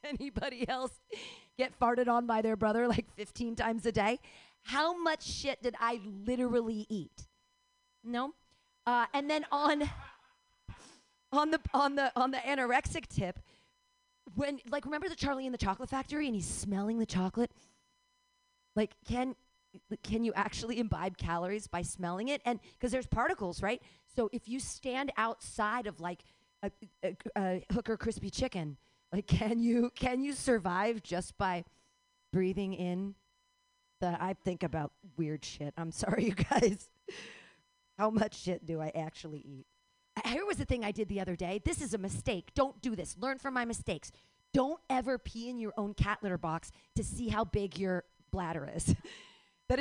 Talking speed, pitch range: 165 wpm, 195-270 Hz